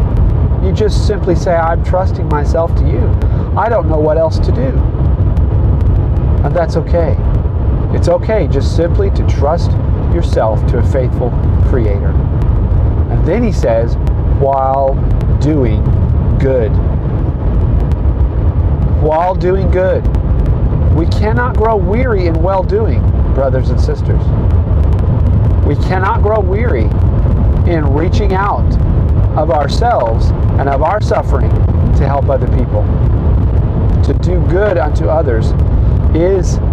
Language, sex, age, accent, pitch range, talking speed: English, male, 40-59, American, 85-100 Hz, 120 wpm